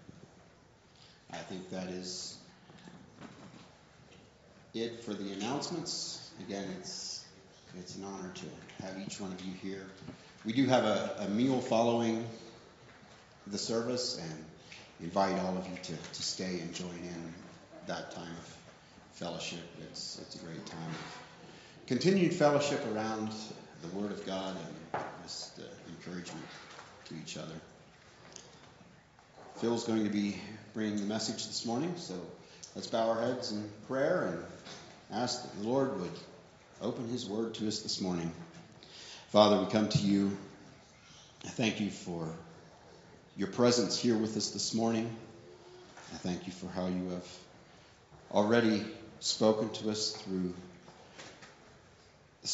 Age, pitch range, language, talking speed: 40-59, 90-115 Hz, English, 140 wpm